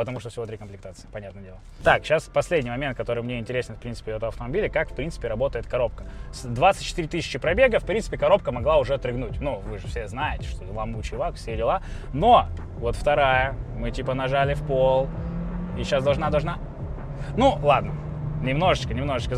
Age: 20-39